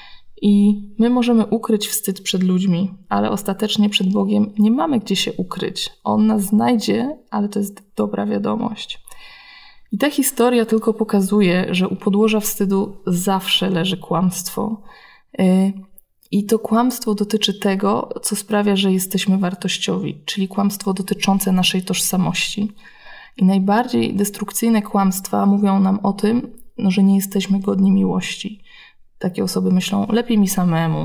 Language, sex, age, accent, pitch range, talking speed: Polish, female, 20-39, native, 185-210 Hz, 135 wpm